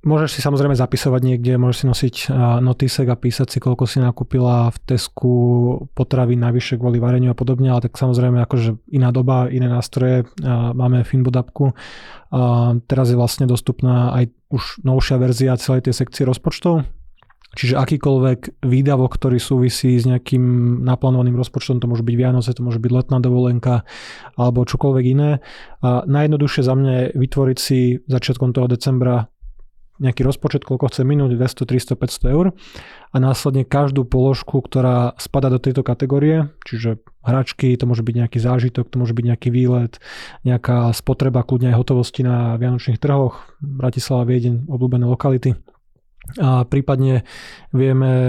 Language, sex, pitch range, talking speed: Slovak, male, 125-135 Hz, 150 wpm